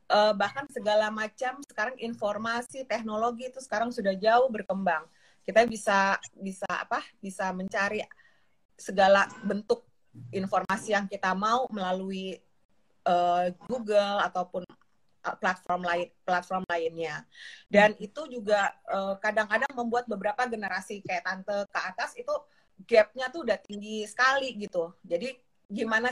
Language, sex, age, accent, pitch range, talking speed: English, female, 30-49, Indonesian, 190-240 Hz, 120 wpm